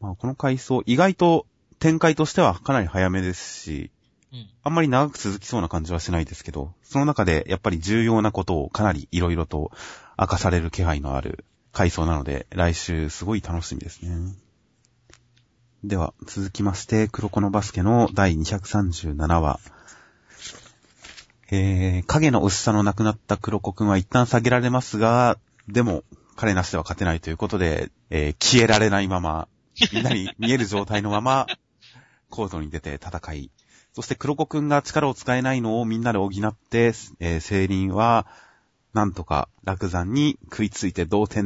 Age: 30-49